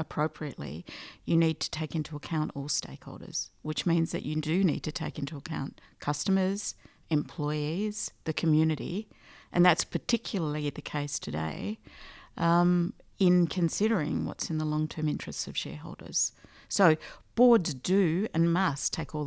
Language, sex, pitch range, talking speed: English, female, 150-185 Hz, 145 wpm